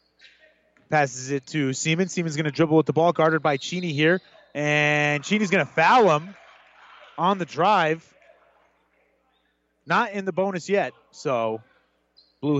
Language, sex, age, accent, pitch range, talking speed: English, male, 30-49, American, 140-195 Hz, 150 wpm